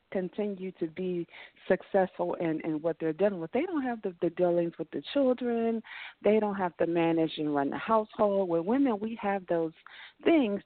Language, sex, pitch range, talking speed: English, female, 150-190 Hz, 190 wpm